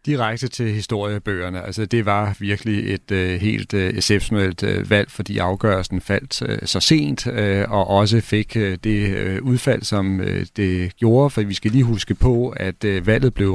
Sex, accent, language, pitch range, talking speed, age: male, native, Danish, 95-115 Hz, 140 wpm, 40-59